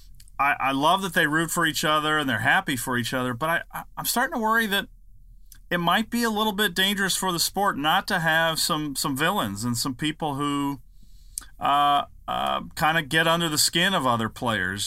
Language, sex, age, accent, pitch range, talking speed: English, male, 40-59, American, 125-175 Hz, 210 wpm